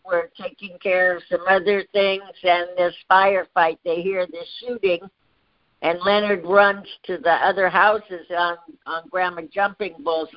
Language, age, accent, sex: English, 60-79, American, female